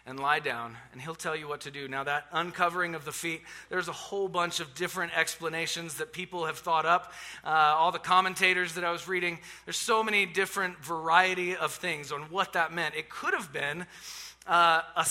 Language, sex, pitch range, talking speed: English, male, 160-195 Hz, 210 wpm